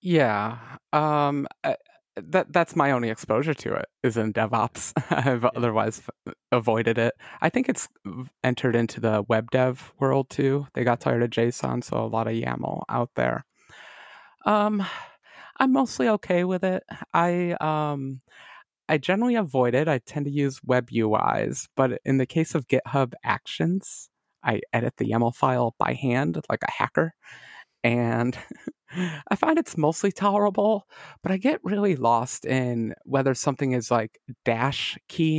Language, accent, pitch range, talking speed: English, American, 120-160 Hz, 155 wpm